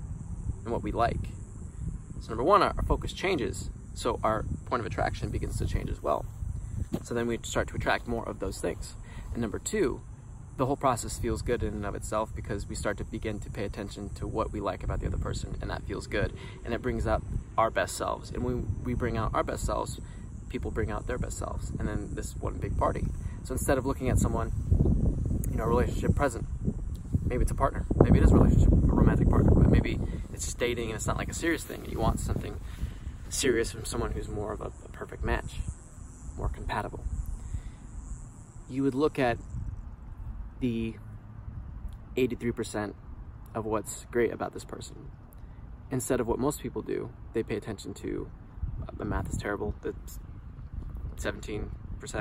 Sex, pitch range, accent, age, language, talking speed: male, 100-115 Hz, American, 20-39, English, 195 wpm